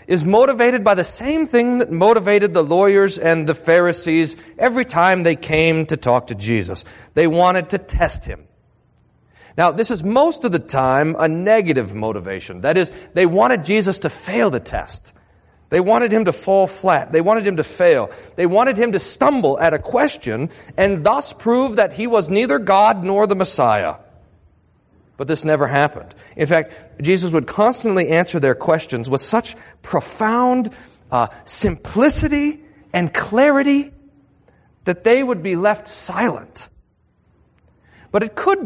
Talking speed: 160 wpm